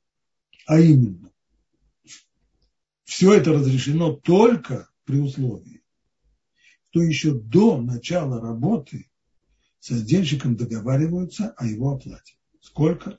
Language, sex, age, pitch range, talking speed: Russian, male, 60-79, 125-165 Hz, 90 wpm